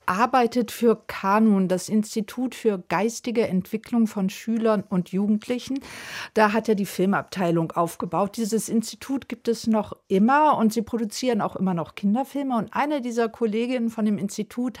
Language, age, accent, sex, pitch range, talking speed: German, 50-69, German, female, 200-240 Hz, 155 wpm